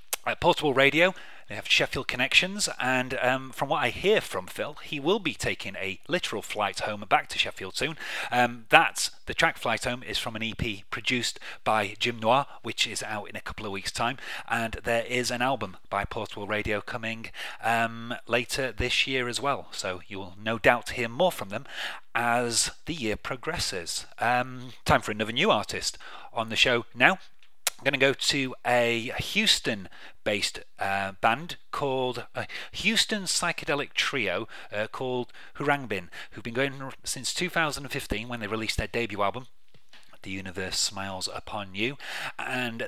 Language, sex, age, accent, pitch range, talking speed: English, male, 30-49, British, 105-125 Hz, 170 wpm